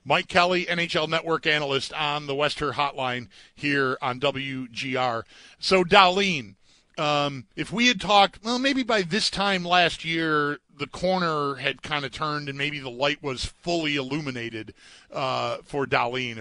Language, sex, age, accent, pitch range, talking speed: English, male, 40-59, American, 135-175 Hz, 155 wpm